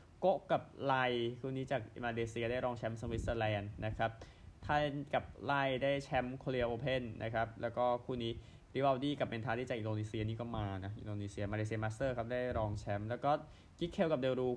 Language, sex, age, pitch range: Thai, male, 20-39, 110-130 Hz